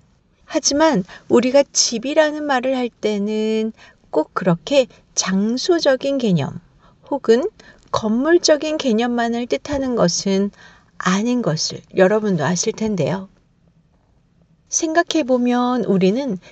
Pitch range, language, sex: 185-275 Hz, Korean, female